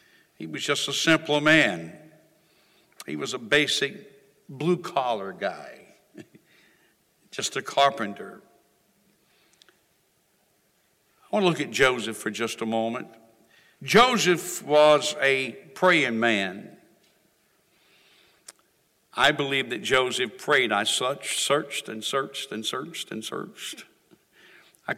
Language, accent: English, American